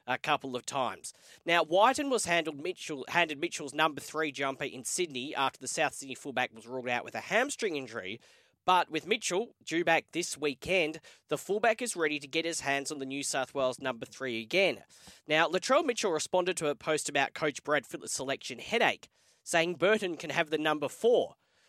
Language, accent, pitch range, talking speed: English, Australian, 135-170 Hz, 195 wpm